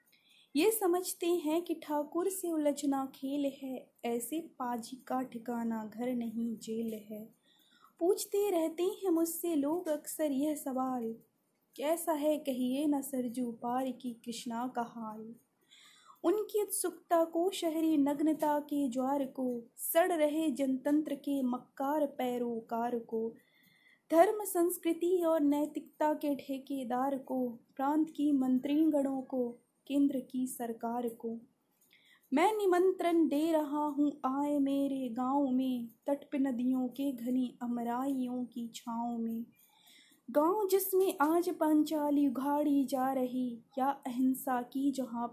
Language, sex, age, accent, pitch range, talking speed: Hindi, female, 20-39, native, 245-310 Hz, 125 wpm